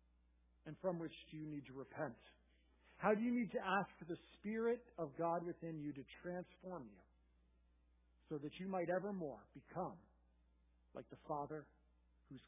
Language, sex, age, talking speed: English, male, 50-69, 165 wpm